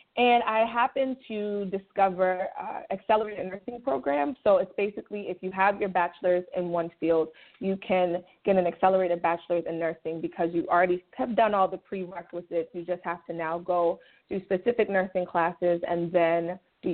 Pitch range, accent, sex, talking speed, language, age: 180-225 Hz, American, female, 175 wpm, English, 20-39